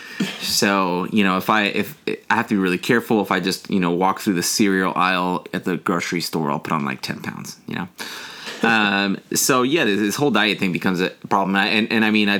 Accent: American